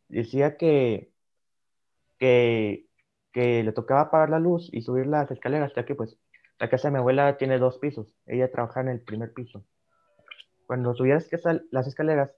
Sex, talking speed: male, 165 wpm